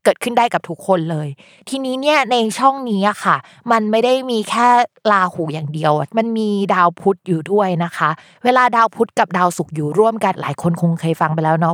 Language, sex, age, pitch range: Thai, female, 20-39, 165-225 Hz